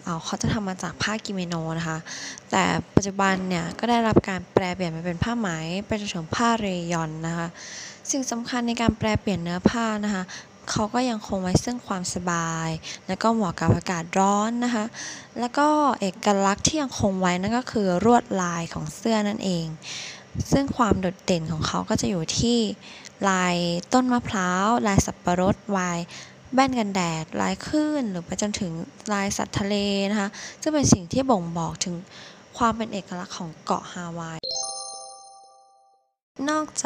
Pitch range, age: 175-220 Hz, 10-29